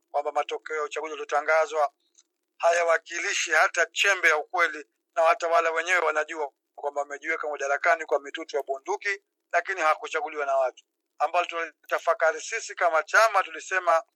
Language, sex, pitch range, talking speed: Swahili, male, 150-170 Hz, 130 wpm